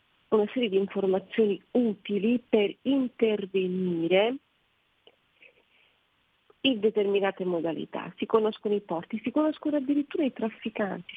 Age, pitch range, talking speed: 40-59, 185-230 Hz, 100 wpm